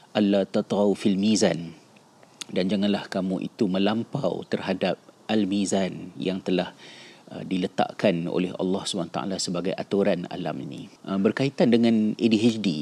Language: Malay